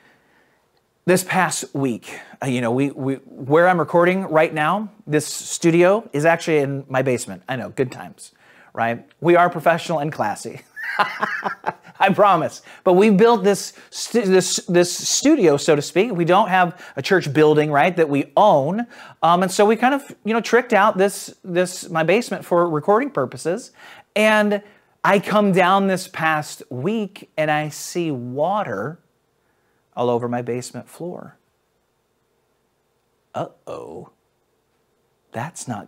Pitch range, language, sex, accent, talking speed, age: 140-205 Hz, English, male, American, 150 wpm, 40-59